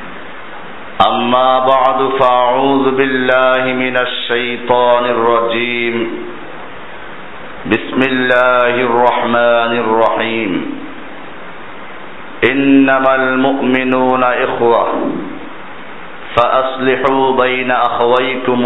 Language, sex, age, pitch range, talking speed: Bengali, male, 50-69, 120-135 Hz, 55 wpm